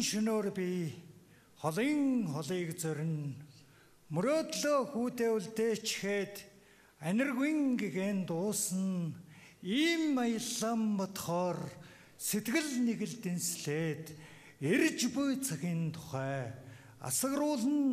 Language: English